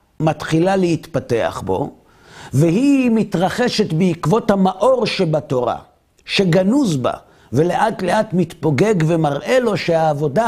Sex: male